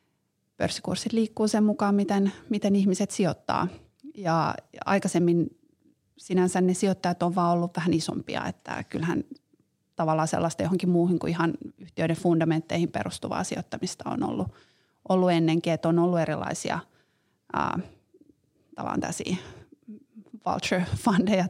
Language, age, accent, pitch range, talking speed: Finnish, 30-49, native, 165-190 Hz, 110 wpm